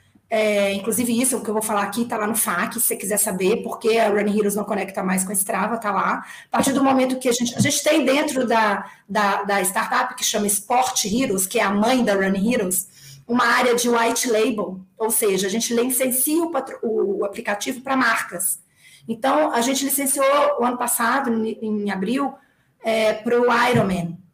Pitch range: 215-275 Hz